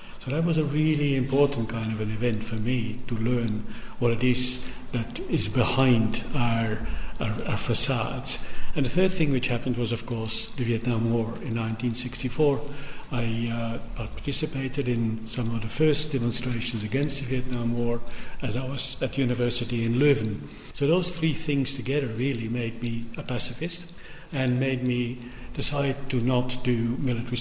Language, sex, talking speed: English, male, 165 wpm